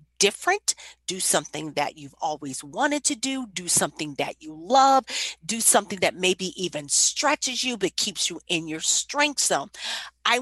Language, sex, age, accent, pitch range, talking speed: English, female, 40-59, American, 180-280 Hz, 165 wpm